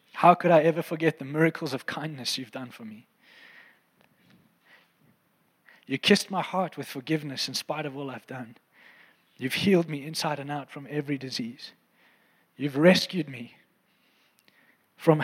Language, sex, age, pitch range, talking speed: English, male, 20-39, 150-185 Hz, 150 wpm